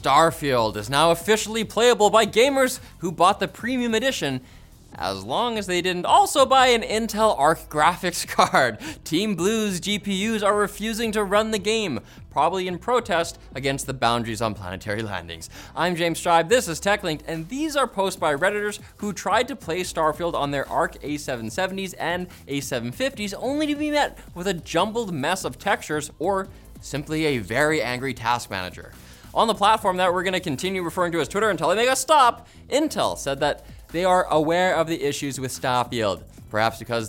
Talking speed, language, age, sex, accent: 185 wpm, English, 20-39, male, American